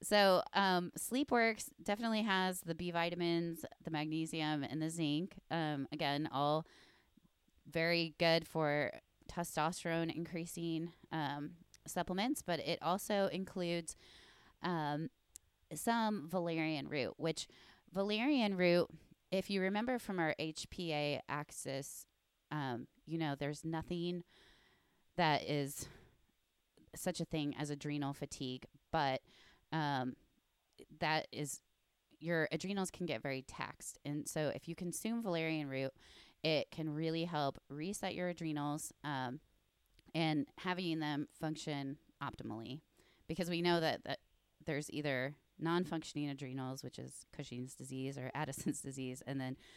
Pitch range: 145-175 Hz